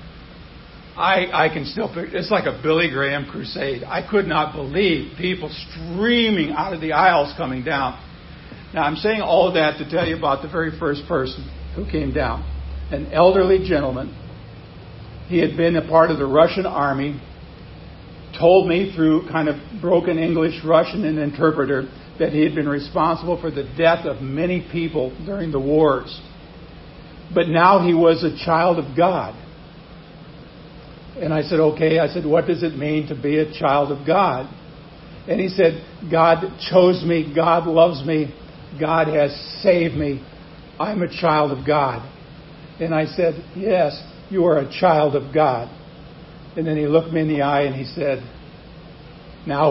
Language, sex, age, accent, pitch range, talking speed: English, male, 60-79, American, 145-170 Hz, 170 wpm